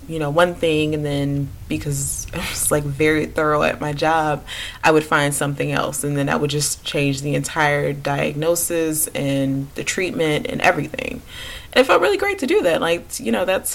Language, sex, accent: English, female, American